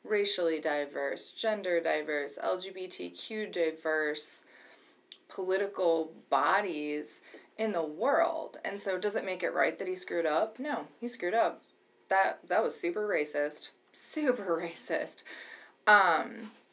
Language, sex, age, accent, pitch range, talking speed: English, female, 20-39, American, 150-190 Hz, 120 wpm